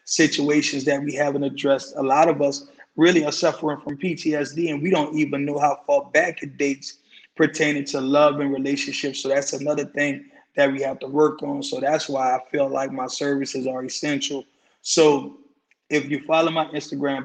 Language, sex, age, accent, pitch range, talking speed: English, male, 20-39, American, 140-150 Hz, 190 wpm